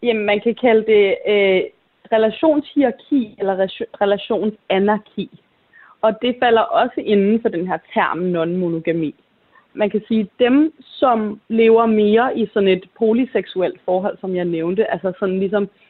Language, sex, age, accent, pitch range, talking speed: Danish, female, 30-49, native, 185-225 Hz, 145 wpm